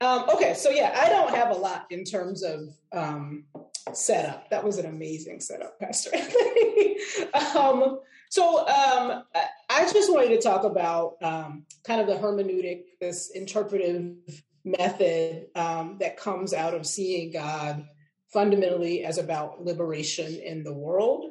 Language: English